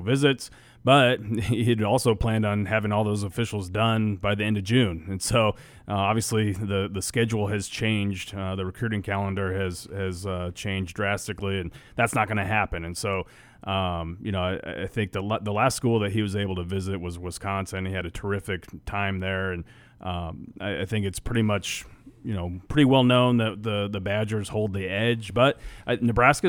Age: 30-49